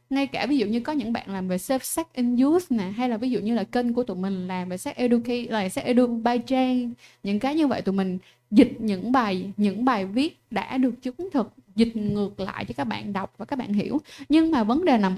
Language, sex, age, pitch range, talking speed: Vietnamese, female, 10-29, 205-275 Hz, 255 wpm